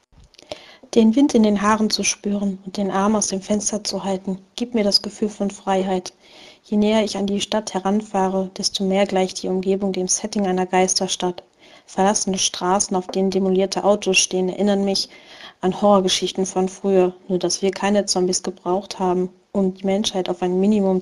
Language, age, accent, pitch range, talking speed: German, 40-59, German, 180-200 Hz, 180 wpm